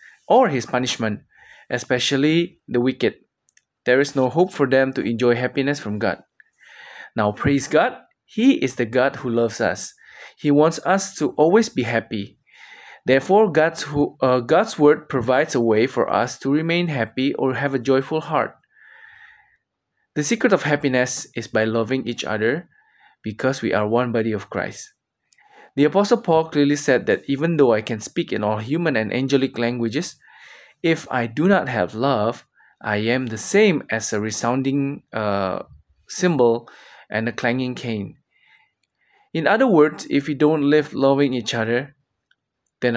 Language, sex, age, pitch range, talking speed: Indonesian, male, 20-39, 120-165 Hz, 160 wpm